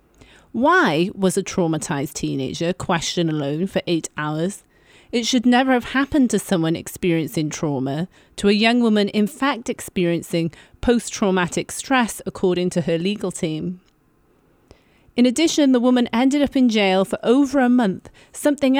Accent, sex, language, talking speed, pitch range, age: British, female, English, 145 wpm, 175-250 Hz, 30-49